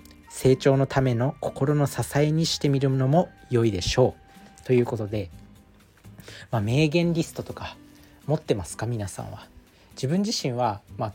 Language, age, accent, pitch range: Japanese, 40-59, native, 110-145 Hz